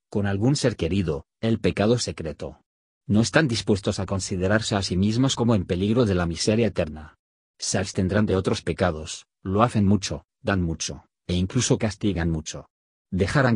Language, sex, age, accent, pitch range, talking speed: Spanish, male, 50-69, Spanish, 90-110 Hz, 165 wpm